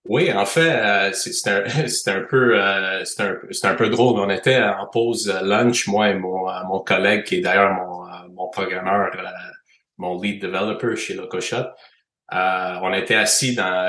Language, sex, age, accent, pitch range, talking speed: French, male, 30-49, Canadian, 95-115 Hz, 175 wpm